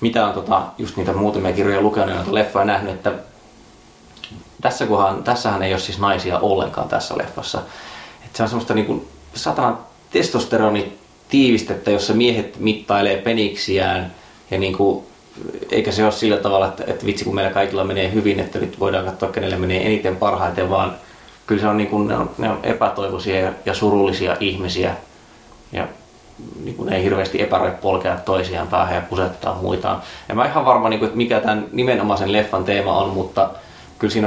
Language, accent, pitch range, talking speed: Finnish, native, 95-105 Hz, 170 wpm